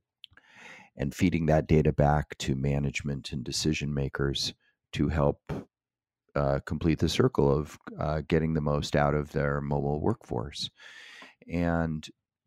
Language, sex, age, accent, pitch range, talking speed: English, male, 40-59, American, 75-90 Hz, 130 wpm